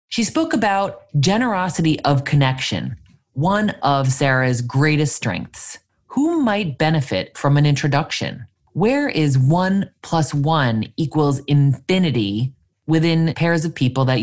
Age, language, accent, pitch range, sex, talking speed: 20-39, English, American, 130-190 Hz, male, 120 wpm